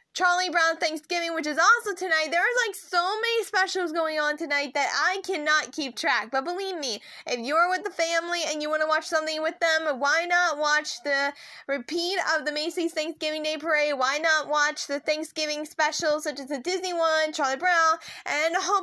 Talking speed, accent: 205 wpm, American